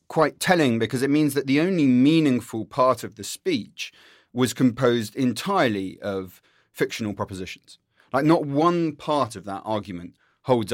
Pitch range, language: 105-140 Hz, English